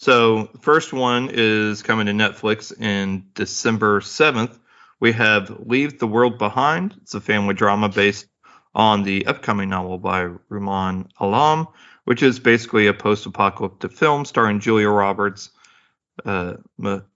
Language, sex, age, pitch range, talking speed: English, male, 40-59, 100-115 Hz, 135 wpm